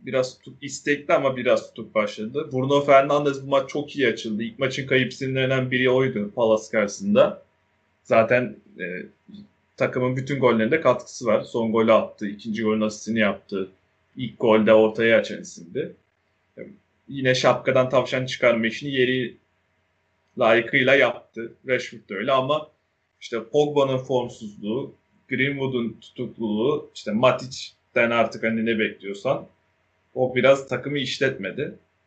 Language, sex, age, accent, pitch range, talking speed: Turkish, male, 30-49, native, 110-145 Hz, 125 wpm